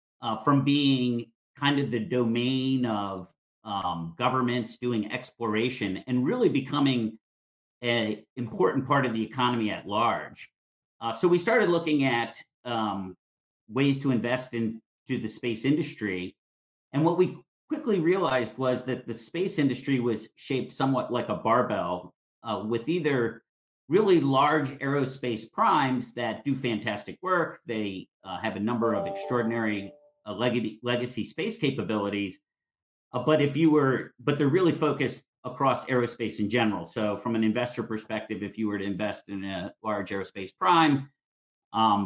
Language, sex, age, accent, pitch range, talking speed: English, male, 50-69, American, 110-140 Hz, 145 wpm